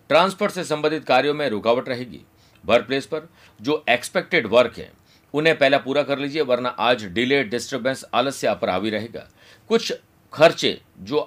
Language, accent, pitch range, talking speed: Hindi, native, 115-155 Hz, 160 wpm